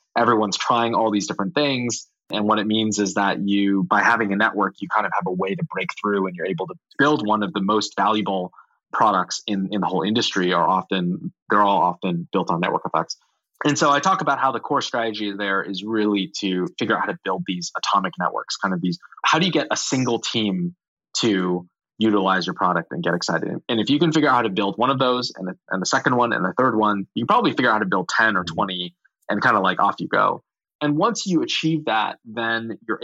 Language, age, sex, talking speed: English, 20-39, male, 245 wpm